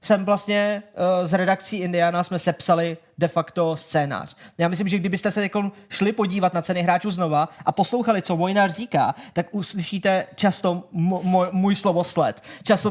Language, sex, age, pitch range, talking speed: Czech, male, 20-39, 170-205 Hz, 170 wpm